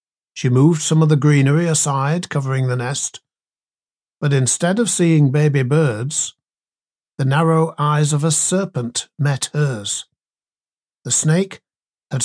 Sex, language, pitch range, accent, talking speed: male, English, 135-165 Hz, British, 130 wpm